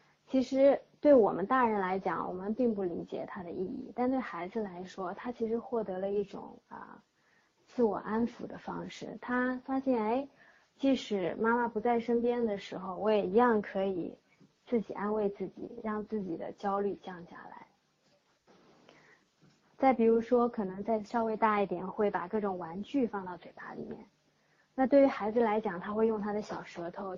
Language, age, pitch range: Chinese, 20-39, 195-240 Hz